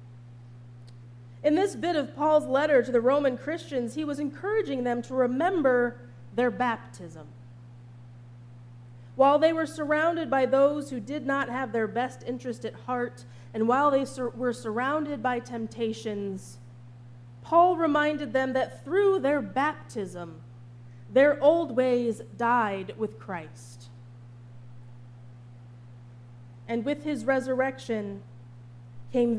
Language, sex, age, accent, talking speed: English, female, 30-49, American, 120 wpm